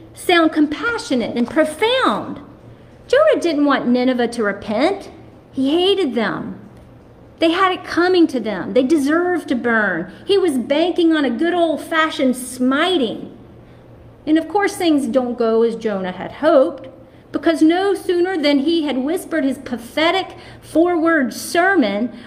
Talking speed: 140 wpm